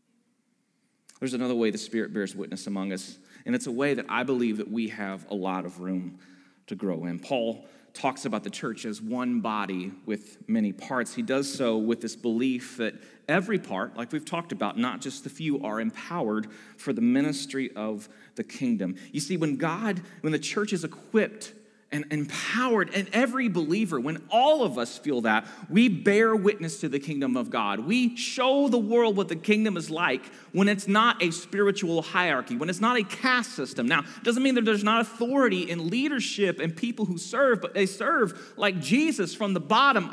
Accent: American